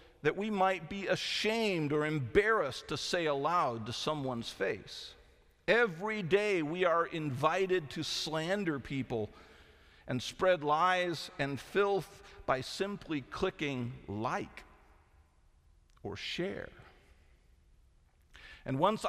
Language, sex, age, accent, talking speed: English, male, 50-69, American, 105 wpm